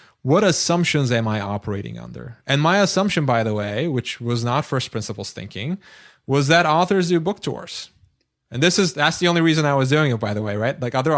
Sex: male